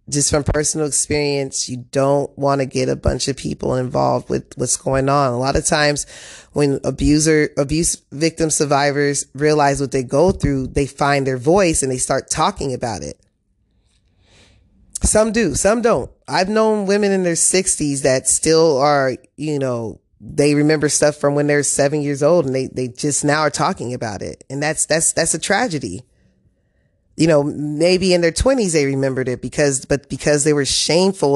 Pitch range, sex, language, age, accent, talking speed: 135-155 Hz, female, English, 20-39, American, 185 wpm